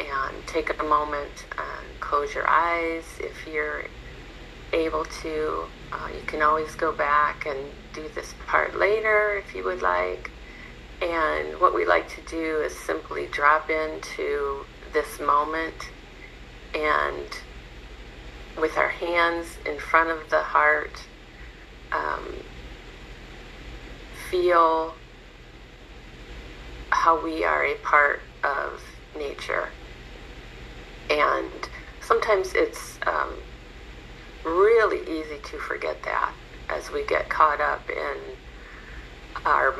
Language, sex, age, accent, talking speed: English, female, 40-59, American, 110 wpm